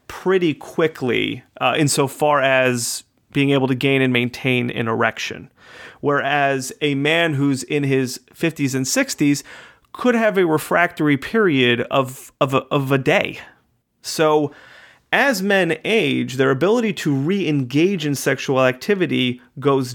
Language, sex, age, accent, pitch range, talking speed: English, male, 30-49, American, 130-165 Hz, 130 wpm